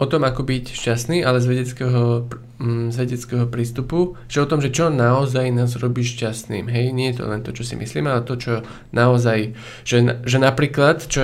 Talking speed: 190 wpm